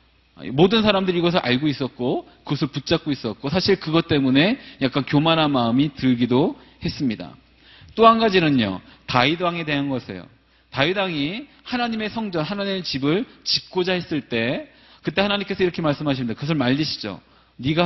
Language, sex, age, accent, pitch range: Korean, male, 40-59, native, 130-185 Hz